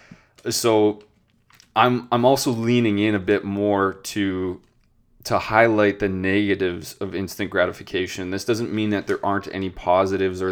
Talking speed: 150 wpm